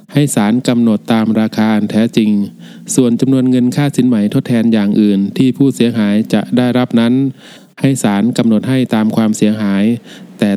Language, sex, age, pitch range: Thai, male, 20-39, 110-130 Hz